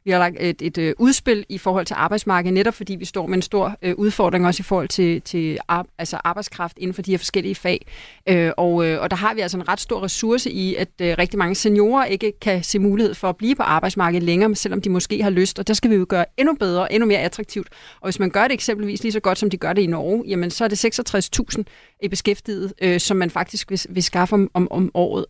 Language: Danish